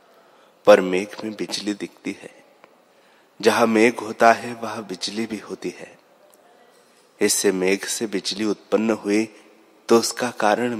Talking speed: 135 wpm